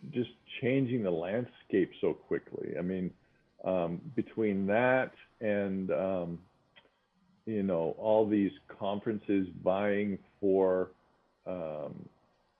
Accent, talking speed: American, 100 wpm